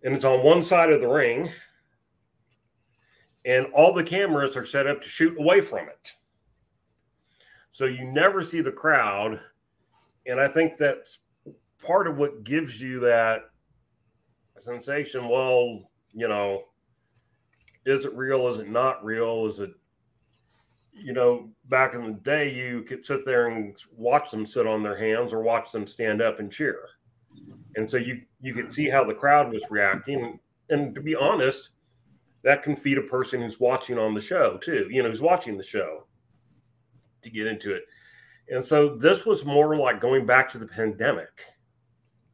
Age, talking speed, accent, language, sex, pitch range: 40-59, 170 wpm, American, English, male, 110-135 Hz